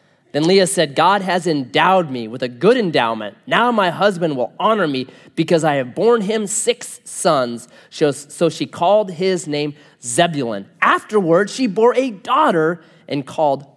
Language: English